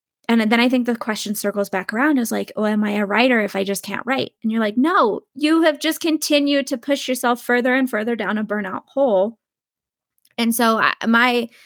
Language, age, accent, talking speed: English, 10-29, American, 215 wpm